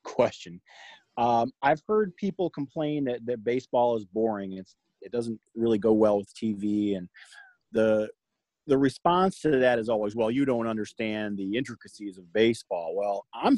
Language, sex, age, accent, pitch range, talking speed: English, male, 30-49, American, 105-135 Hz, 165 wpm